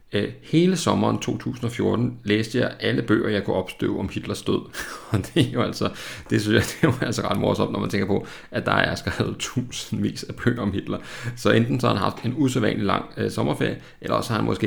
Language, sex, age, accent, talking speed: Danish, male, 30-49, native, 225 wpm